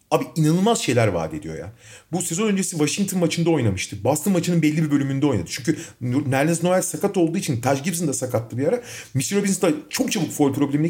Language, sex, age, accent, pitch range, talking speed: Turkish, male, 40-59, native, 130-175 Hz, 200 wpm